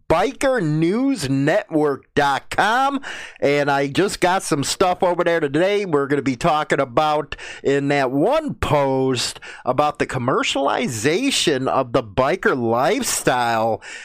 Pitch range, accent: 135-185 Hz, American